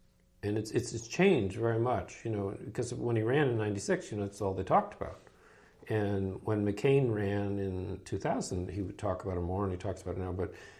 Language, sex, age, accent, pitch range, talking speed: English, male, 50-69, American, 95-110 Hz, 230 wpm